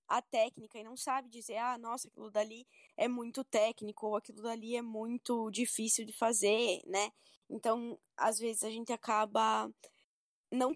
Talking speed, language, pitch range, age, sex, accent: 160 wpm, Portuguese, 215-255 Hz, 10-29, female, Brazilian